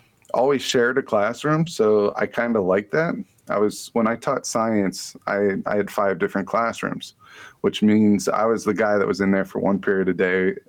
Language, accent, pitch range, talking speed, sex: English, American, 100-115 Hz, 210 wpm, male